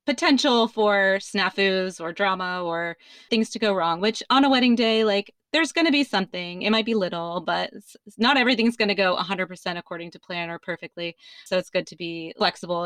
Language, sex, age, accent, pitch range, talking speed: English, female, 20-39, American, 175-215 Hz, 200 wpm